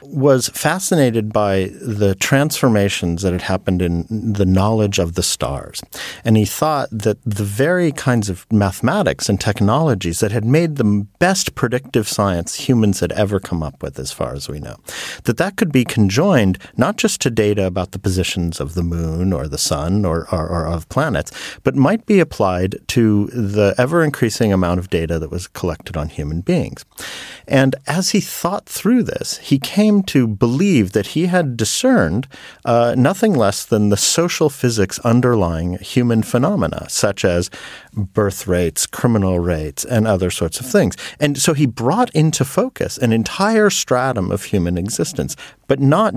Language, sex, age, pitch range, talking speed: English, male, 50-69, 95-135 Hz, 170 wpm